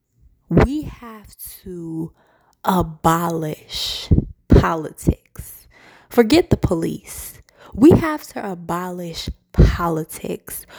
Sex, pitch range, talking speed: female, 160-205 Hz, 70 wpm